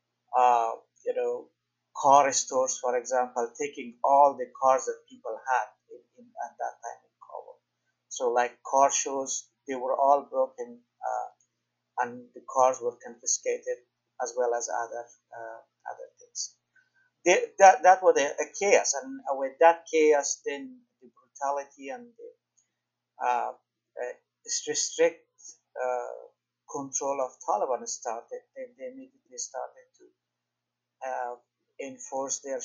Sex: male